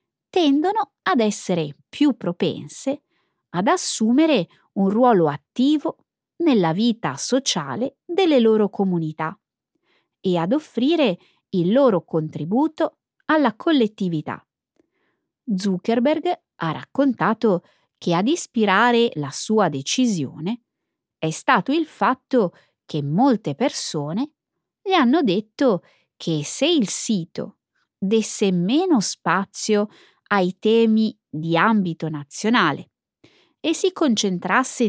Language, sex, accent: Italian, female, native